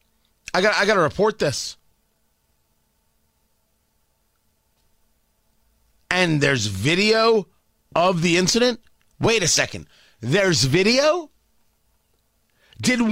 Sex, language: male, English